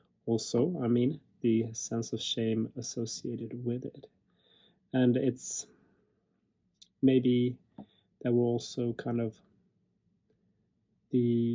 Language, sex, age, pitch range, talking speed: English, male, 30-49, 115-120 Hz, 100 wpm